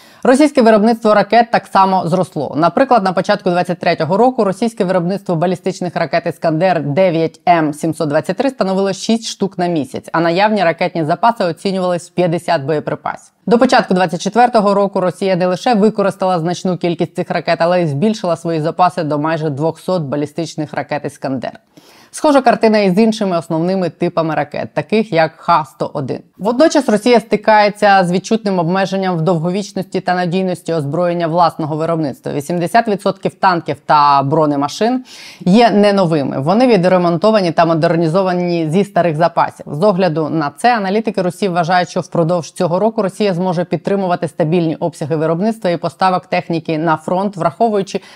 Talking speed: 145 wpm